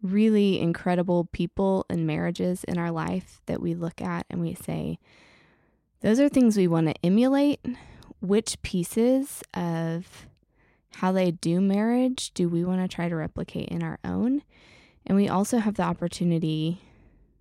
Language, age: English, 20-39